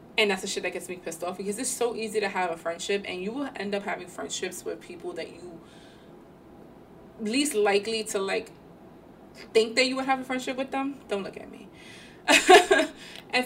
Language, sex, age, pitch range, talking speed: English, female, 20-39, 195-255 Hz, 205 wpm